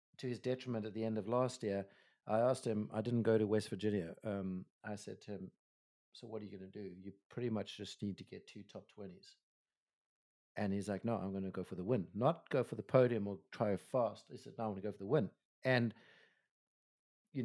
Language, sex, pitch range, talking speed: English, male, 100-125 Hz, 240 wpm